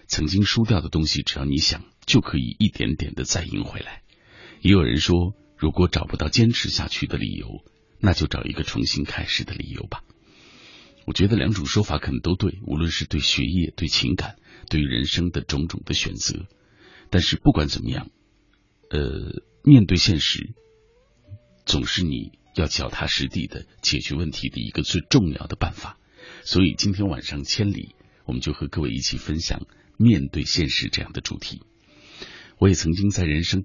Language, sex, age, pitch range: Chinese, male, 50-69, 75-105 Hz